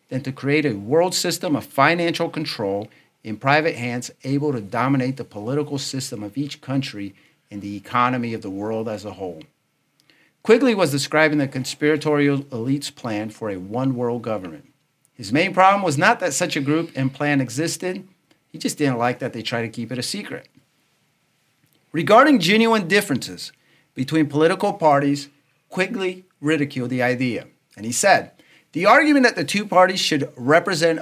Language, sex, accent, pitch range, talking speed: English, male, American, 120-165 Hz, 165 wpm